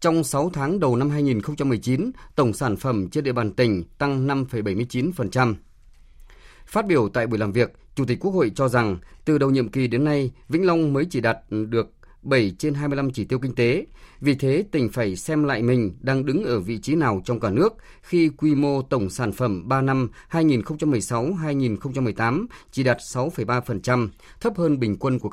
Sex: male